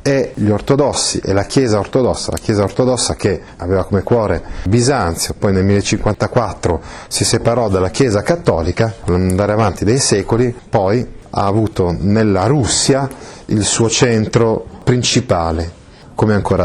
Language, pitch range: Italian, 95-130 Hz